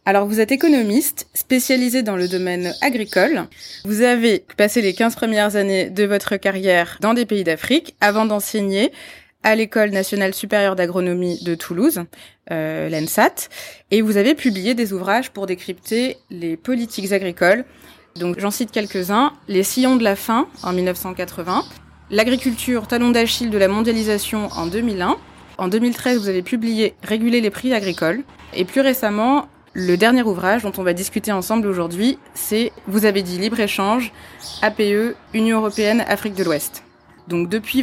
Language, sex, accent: French, female, French